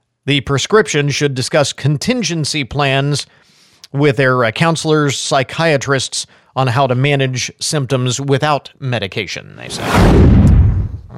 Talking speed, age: 105 wpm, 40-59